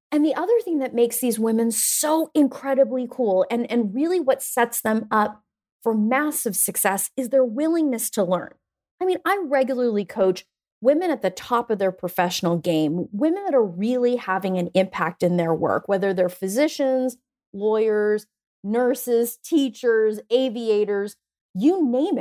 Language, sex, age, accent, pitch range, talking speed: English, female, 30-49, American, 205-280 Hz, 155 wpm